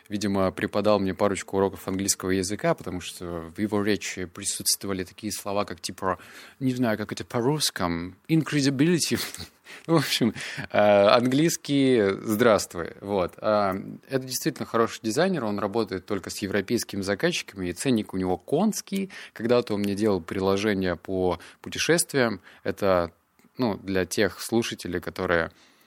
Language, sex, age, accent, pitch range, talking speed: Russian, male, 20-39, native, 95-120 Hz, 130 wpm